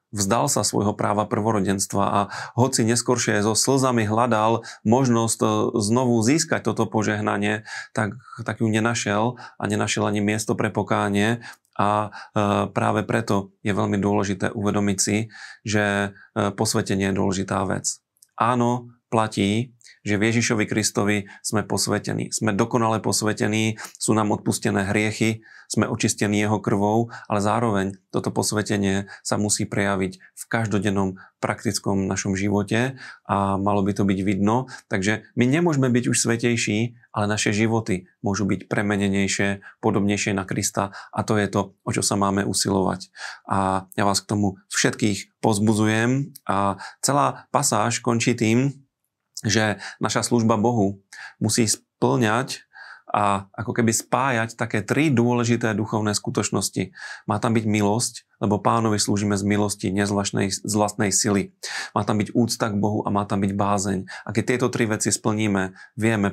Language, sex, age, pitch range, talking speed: Slovak, male, 30-49, 100-115 Hz, 140 wpm